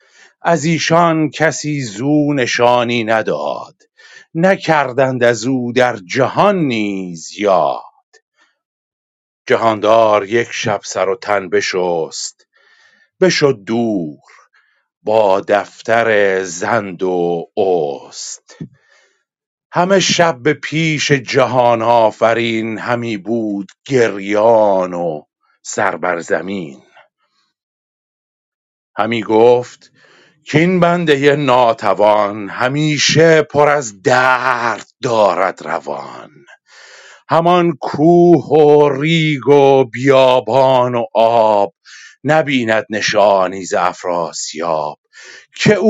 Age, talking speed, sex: 50-69, 80 wpm, male